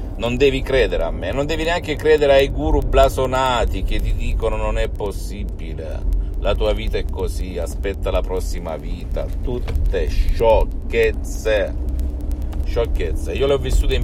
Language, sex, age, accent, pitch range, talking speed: Italian, male, 50-69, native, 80-100 Hz, 150 wpm